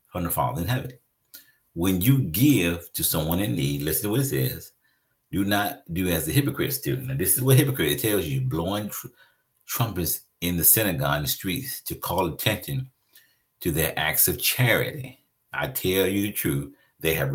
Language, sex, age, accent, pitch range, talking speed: English, male, 50-69, American, 95-135 Hz, 190 wpm